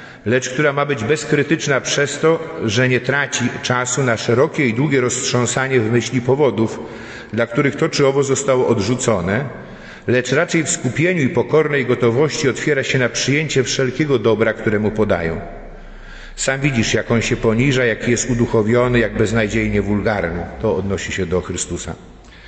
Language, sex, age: Polish, male, 50-69